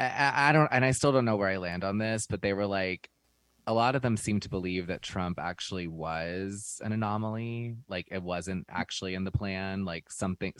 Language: English